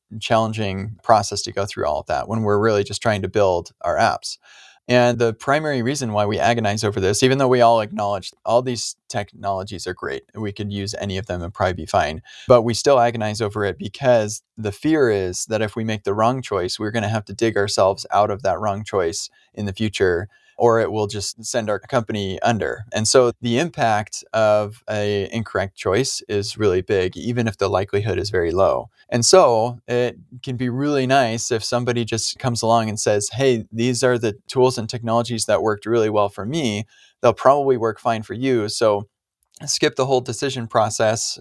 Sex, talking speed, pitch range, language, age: male, 205 wpm, 105-120 Hz, English, 20-39